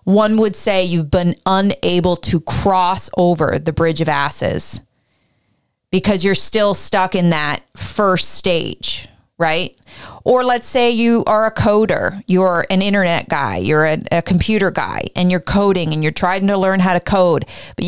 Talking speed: 170 wpm